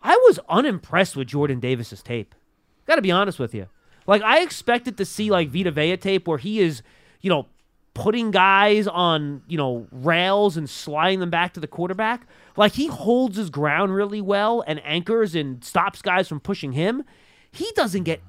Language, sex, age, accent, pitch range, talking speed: English, male, 30-49, American, 155-245 Hz, 190 wpm